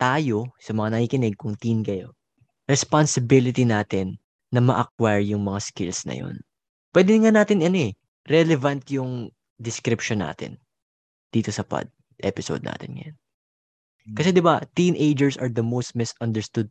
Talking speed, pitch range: 140 wpm, 105-140 Hz